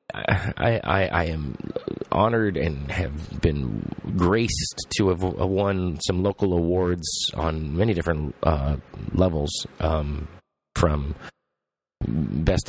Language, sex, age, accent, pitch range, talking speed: English, male, 30-49, American, 80-115 Hz, 110 wpm